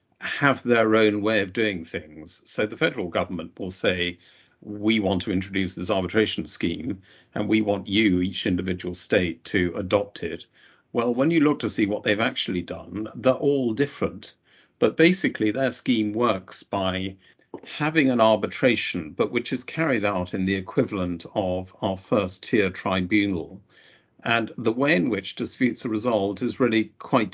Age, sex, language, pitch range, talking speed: 50-69, male, English, 95-110 Hz, 165 wpm